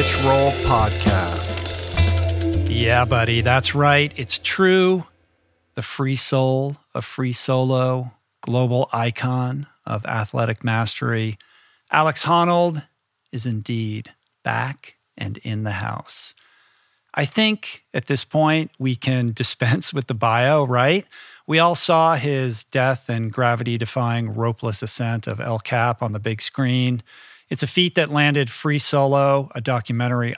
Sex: male